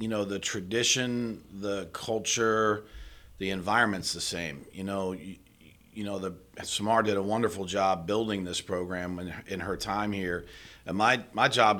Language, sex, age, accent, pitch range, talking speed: English, male, 40-59, American, 90-110 Hz, 170 wpm